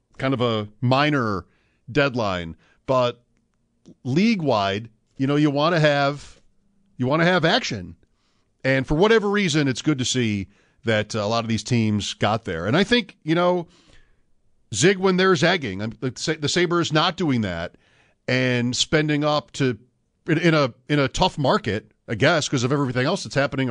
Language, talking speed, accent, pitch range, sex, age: English, 170 wpm, American, 115-155 Hz, male, 50-69